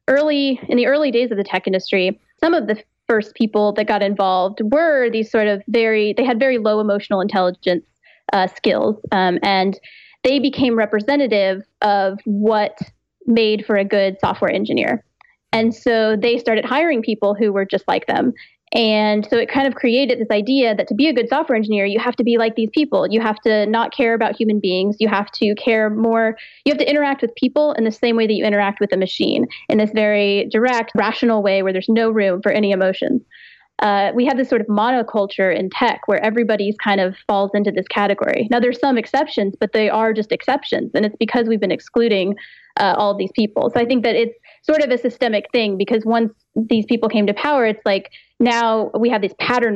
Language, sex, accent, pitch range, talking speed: English, female, American, 200-240 Hz, 215 wpm